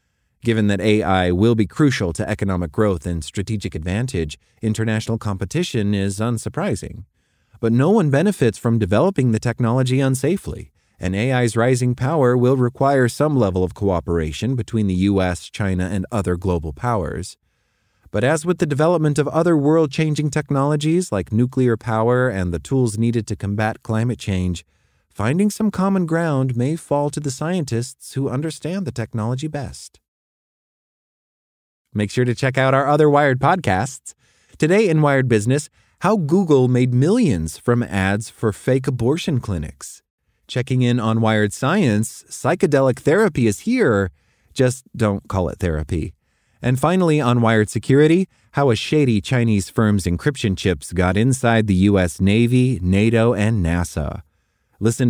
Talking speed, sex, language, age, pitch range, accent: 145 wpm, male, English, 30-49, 100-135 Hz, American